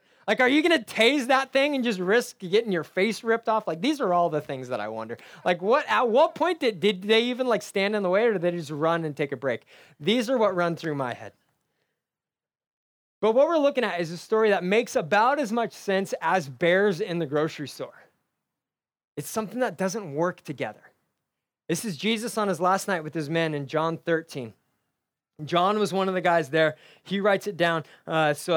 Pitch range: 155-205 Hz